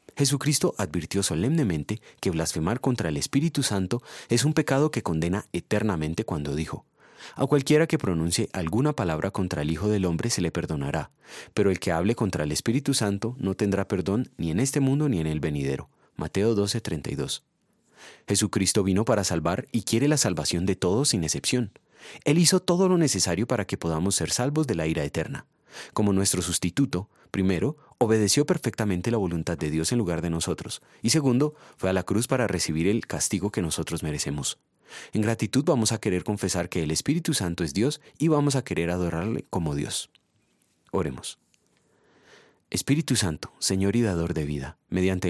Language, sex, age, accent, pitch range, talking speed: Spanish, male, 30-49, Colombian, 85-120 Hz, 175 wpm